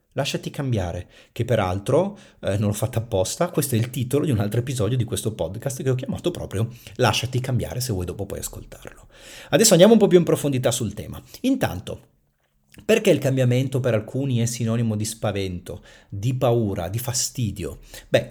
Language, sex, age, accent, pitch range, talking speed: Italian, male, 40-59, native, 105-135 Hz, 180 wpm